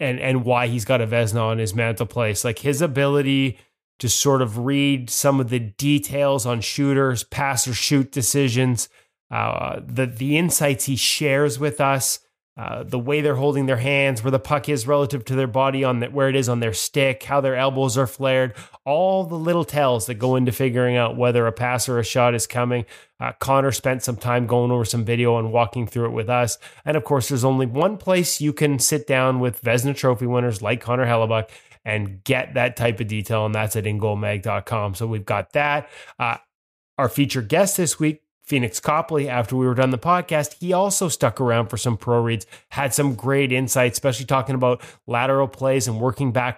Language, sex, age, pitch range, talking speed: English, male, 20-39, 120-140 Hz, 210 wpm